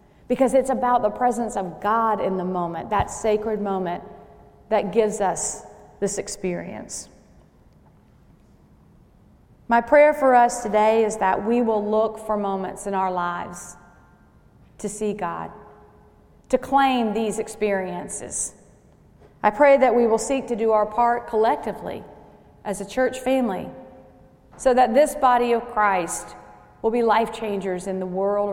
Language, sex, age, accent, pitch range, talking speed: English, female, 40-59, American, 200-245 Hz, 145 wpm